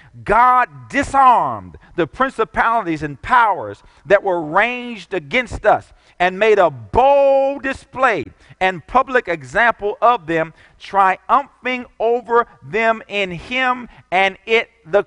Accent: American